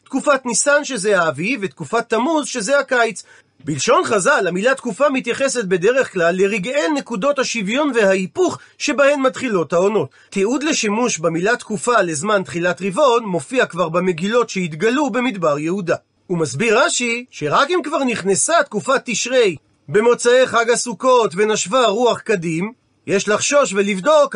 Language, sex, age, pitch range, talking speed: Hebrew, male, 40-59, 200-265 Hz, 130 wpm